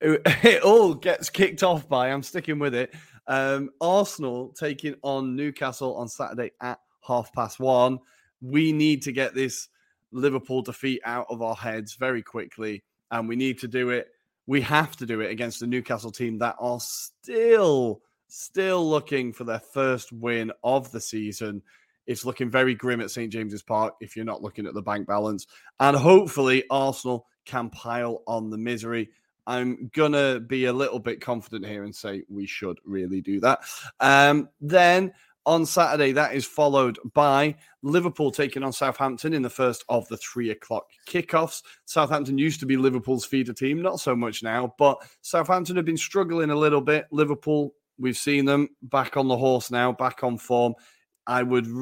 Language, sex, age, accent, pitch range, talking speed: English, male, 30-49, British, 115-145 Hz, 175 wpm